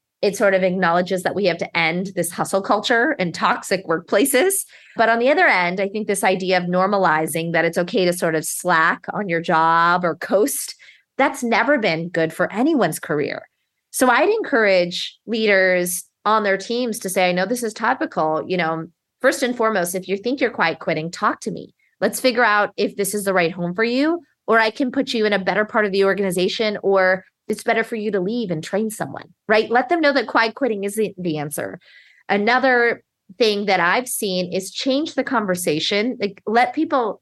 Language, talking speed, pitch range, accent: English, 205 wpm, 185-245 Hz, American